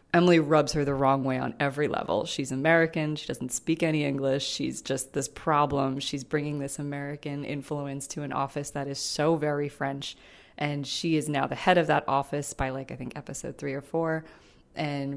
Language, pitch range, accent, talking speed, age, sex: English, 135-165 Hz, American, 200 wpm, 20-39, female